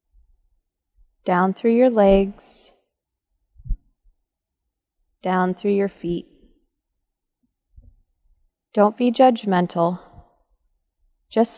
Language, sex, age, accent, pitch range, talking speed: English, female, 20-39, American, 165-205 Hz, 60 wpm